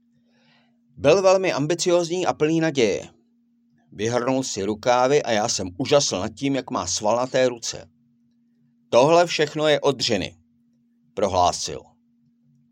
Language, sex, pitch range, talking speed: Czech, male, 115-175 Hz, 120 wpm